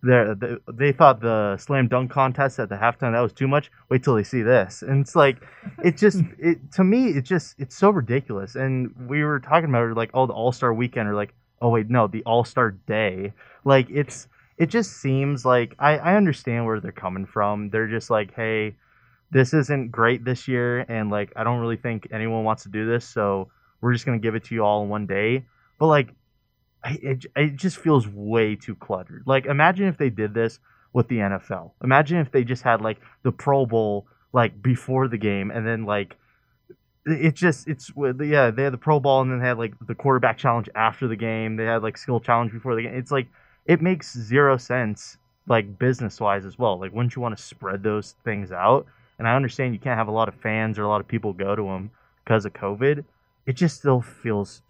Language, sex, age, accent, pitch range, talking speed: English, male, 20-39, American, 110-135 Hz, 225 wpm